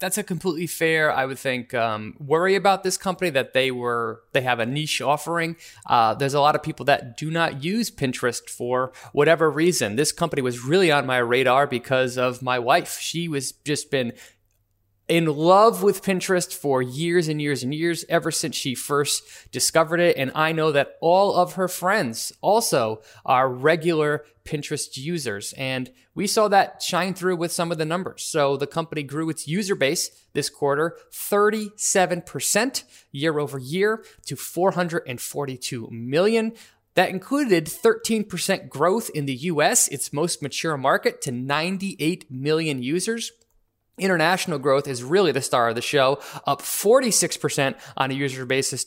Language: English